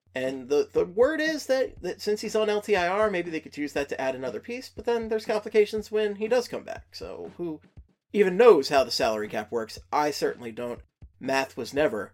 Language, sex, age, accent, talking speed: English, male, 30-49, American, 215 wpm